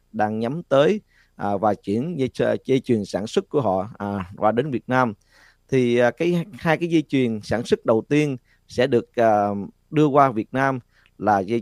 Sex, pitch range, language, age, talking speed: male, 110-140 Hz, Vietnamese, 20-39, 195 wpm